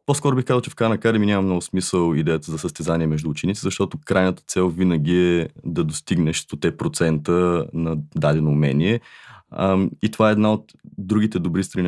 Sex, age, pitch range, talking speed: male, 20-39, 80-100 Hz, 170 wpm